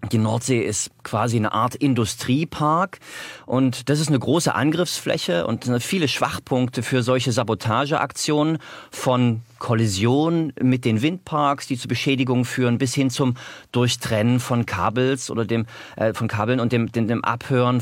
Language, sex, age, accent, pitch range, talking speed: German, male, 40-59, German, 115-140 Hz, 150 wpm